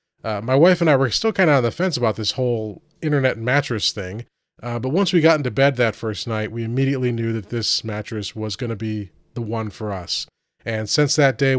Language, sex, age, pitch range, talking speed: English, male, 30-49, 110-135 Hz, 240 wpm